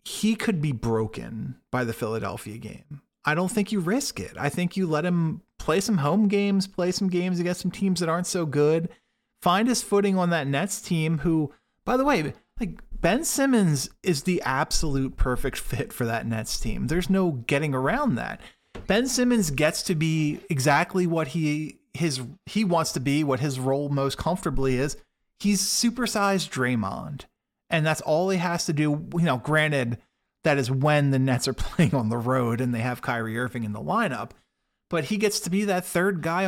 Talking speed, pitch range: 195 wpm, 140-190 Hz